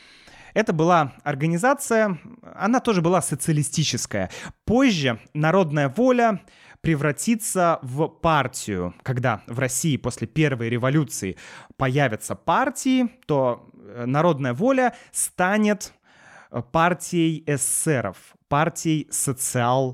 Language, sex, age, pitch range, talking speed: Russian, male, 20-39, 120-170 Hz, 85 wpm